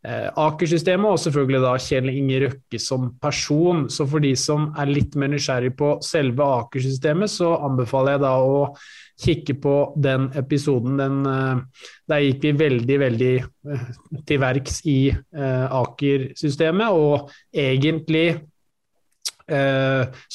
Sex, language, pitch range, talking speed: male, English, 130-155 Hz, 125 wpm